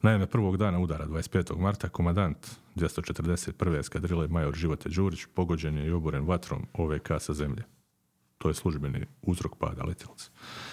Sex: male